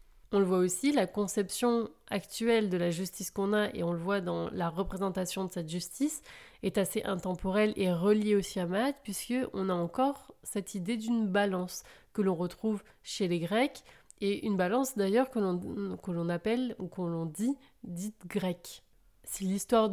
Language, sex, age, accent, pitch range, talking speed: French, female, 30-49, French, 175-210 Hz, 180 wpm